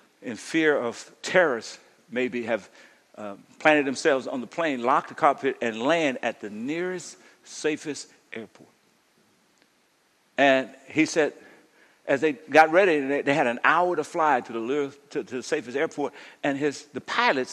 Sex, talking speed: male, 160 wpm